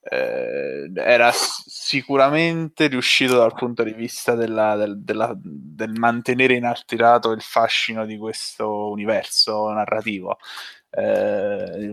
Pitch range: 105-135 Hz